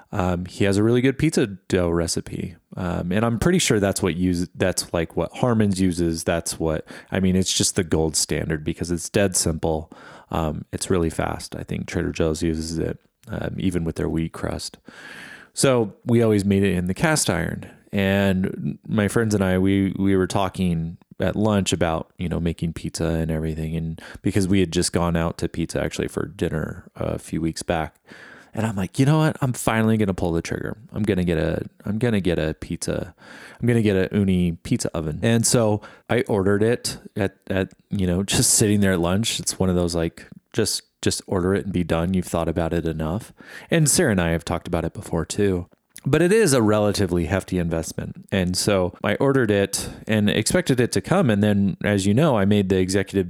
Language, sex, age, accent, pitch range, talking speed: English, male, 30-49, American, 85-105 Hz, 215 wpm